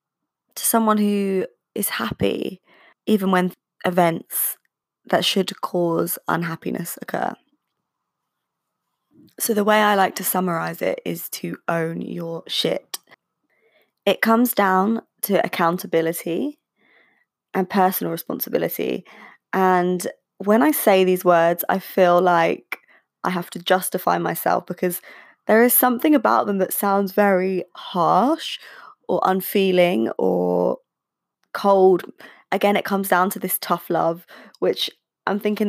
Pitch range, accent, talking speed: 175-205 Hz, British, 125 wpm